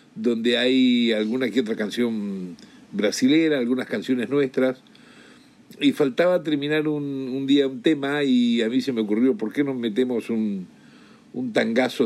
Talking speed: 155 wpm